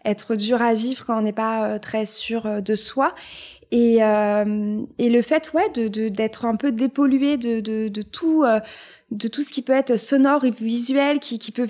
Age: 20-39